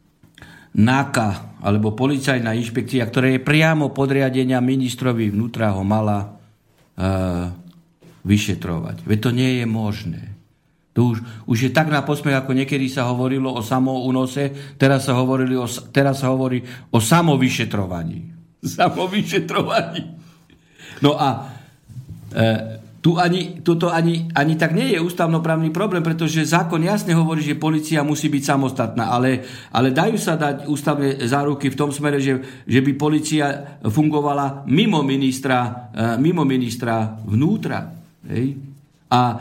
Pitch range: 125-165 Hz